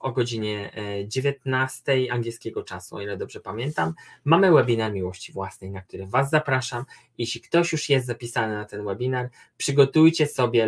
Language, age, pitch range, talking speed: Polish, 20-39, 105-140 Hz, 150 wpm